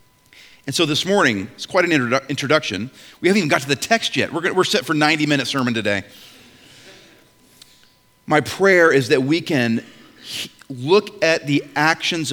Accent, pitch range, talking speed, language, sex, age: American, 115-150 Hz, 160 wpm, English, male, 40-59